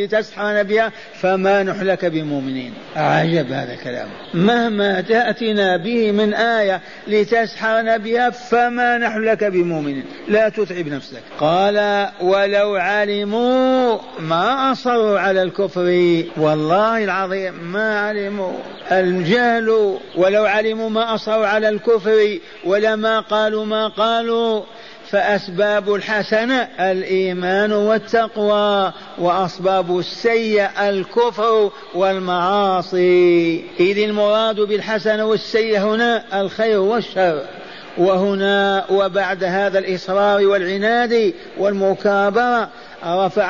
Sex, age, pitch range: male, 50-69, 195-225 Hz